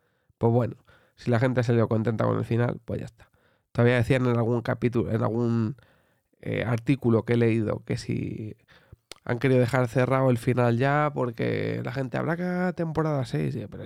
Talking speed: 190 wpm